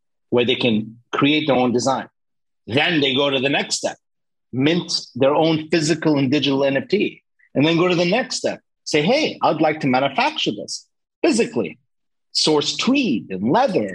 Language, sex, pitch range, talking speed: English, male, 135-175 Hz, 170 wpm